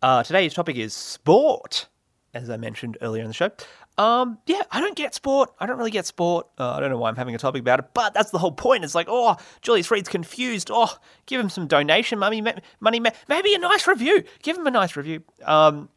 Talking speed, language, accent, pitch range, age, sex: 235 wpm, English, Australian, 125-190 Hz, 30-49, male